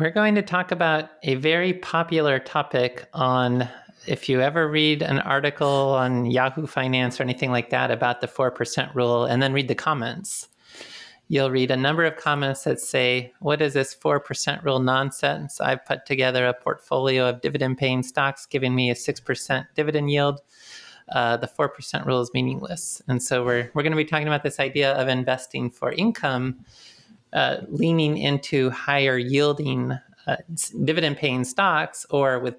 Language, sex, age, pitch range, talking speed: English, male, 30-49, 125-150 Hz, 170 wpm